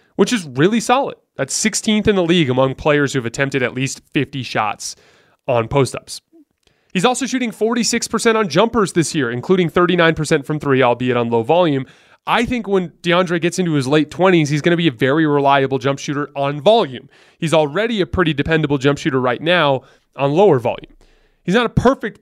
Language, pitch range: English, 140-185 Hz